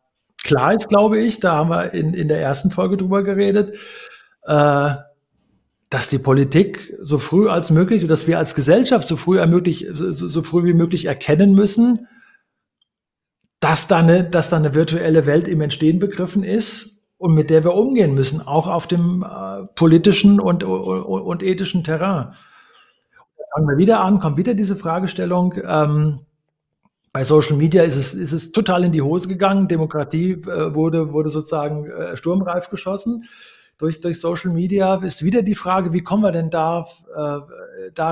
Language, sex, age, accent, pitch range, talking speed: German, male, 50-69, German, 155-190 Hz, 160 wpm